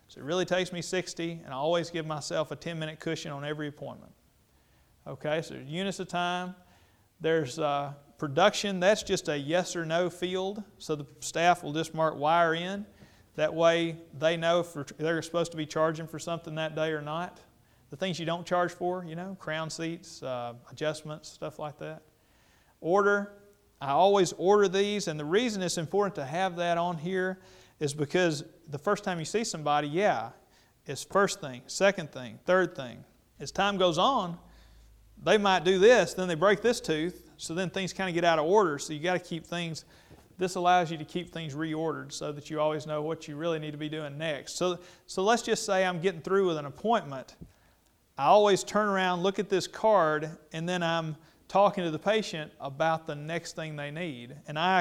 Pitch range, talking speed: 155-185 Hz, 200 wpm